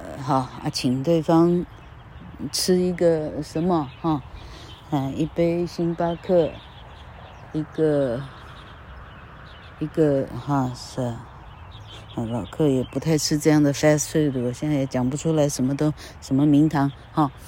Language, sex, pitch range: Chinese, female, 130-165 Hz